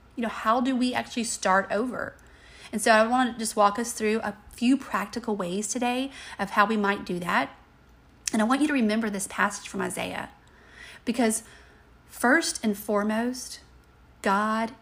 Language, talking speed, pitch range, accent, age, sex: English, 175 wpm, 205-245 Hz, American, 30-49, female